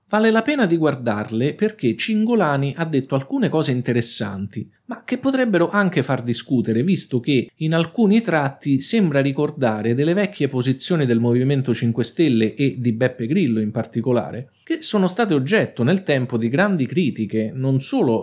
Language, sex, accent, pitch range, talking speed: Italian, male, native, 115-165 Hz, 160 wpm